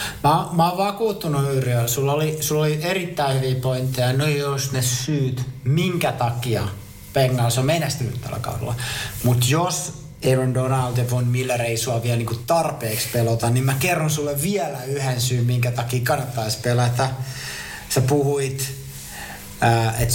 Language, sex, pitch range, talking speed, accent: Finnish, male, 120-140 Hz, 145 wpm, native